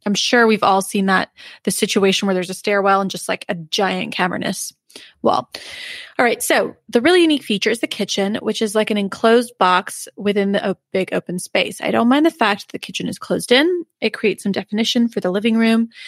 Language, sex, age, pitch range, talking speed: English, female, 20-39, 190-230 Hz, 225 wpm